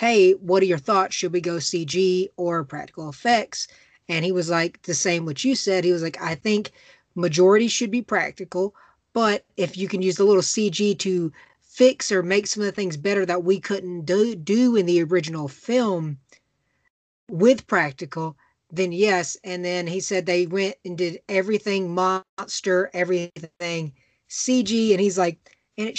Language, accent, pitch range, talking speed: English, American, 180-220 Hz, 180 wpm